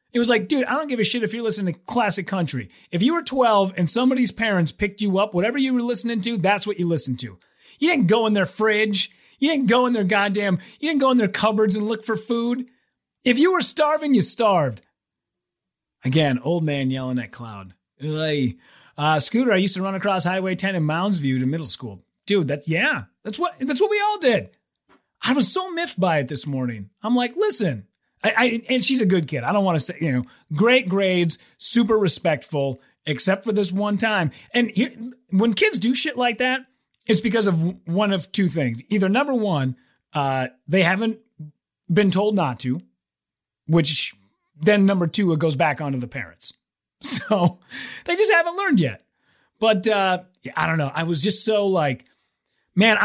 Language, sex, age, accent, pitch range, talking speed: English, male, 30-49, American, 155-230 Hz, 200 wpm